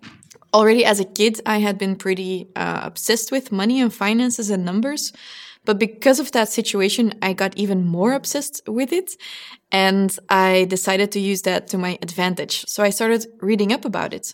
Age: 20-39